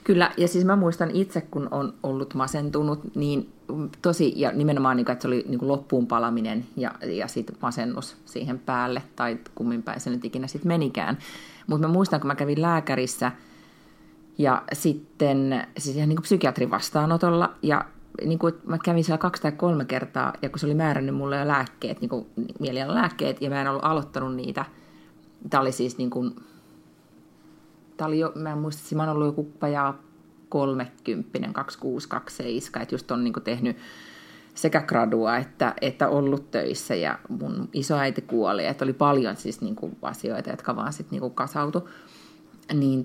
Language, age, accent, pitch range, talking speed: Finnish, 30-49, native, 130-160 Hz, 165 wpm